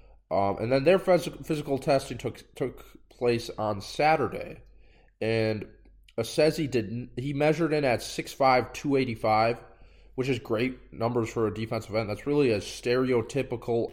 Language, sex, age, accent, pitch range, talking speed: English, male, 20-39, American, 110-135 Hz, 135 wpm